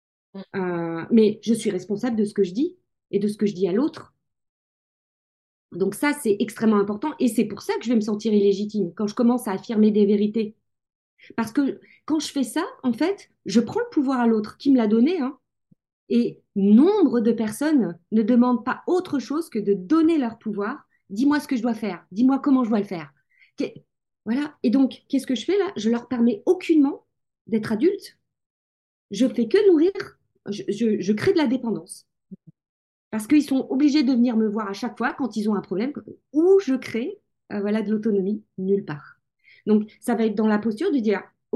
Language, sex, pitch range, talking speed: French, female, 210-280 Hz, 215 wpm